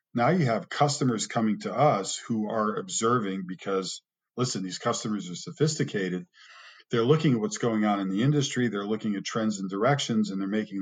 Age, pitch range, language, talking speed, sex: 50-69, 100-120 Hz, English, 190 wpm, male